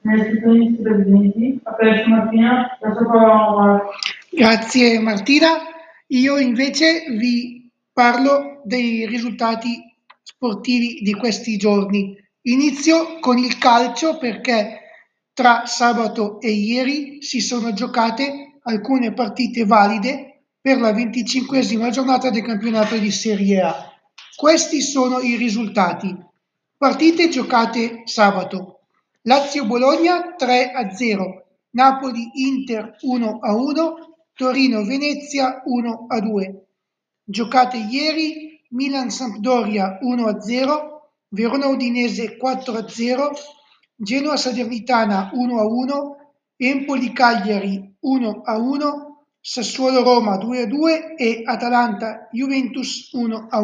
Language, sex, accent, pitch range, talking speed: Italian, male, native, 225-270 Hz, 100 wpm